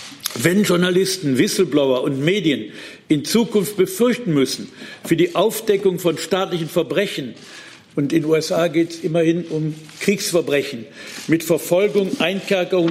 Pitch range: 150-185 Hz